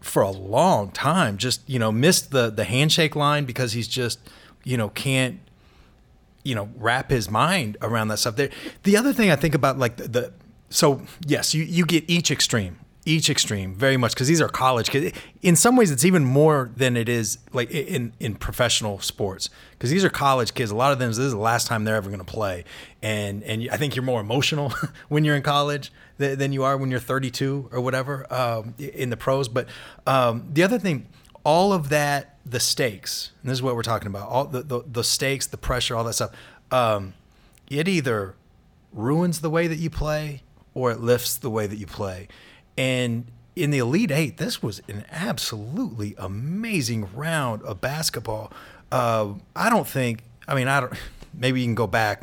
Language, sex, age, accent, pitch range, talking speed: English, male, 30-49, American, 115-145 Hz, 205 wpm